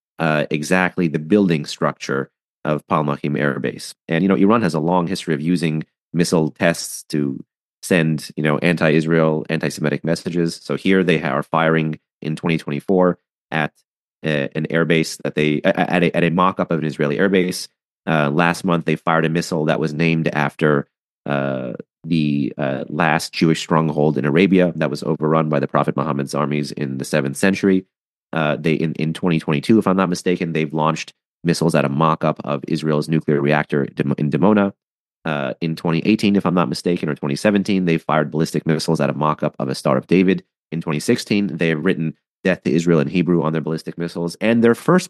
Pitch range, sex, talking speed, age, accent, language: 75-90 Hz, male, 185 wpm, 30-49, American, English